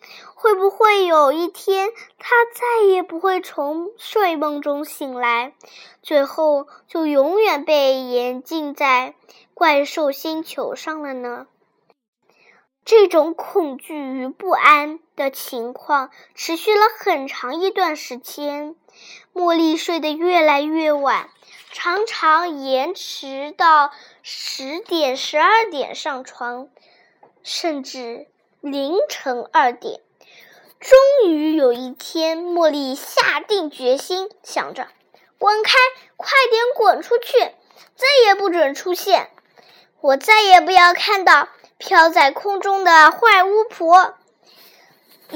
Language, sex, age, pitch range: Chinese, female, 10-29, 290-405 Hz